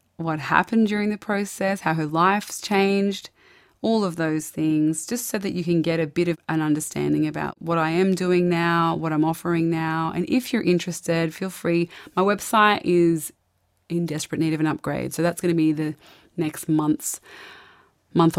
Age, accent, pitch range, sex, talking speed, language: 20-39, Australian, 155-175 Hz, female, 190 wpm, English